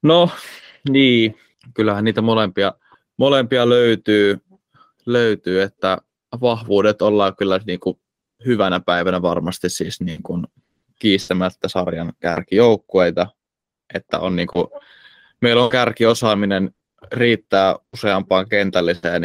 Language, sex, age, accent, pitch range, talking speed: Finnish, male, 20-39, native, 95-115 Hz, 95 wpm